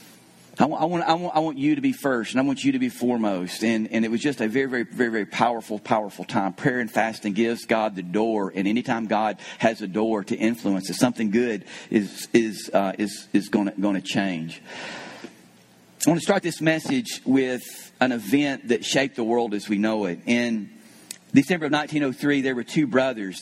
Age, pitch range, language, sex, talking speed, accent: 40-59, 115-155 Hz, English, male, 210 wpm, American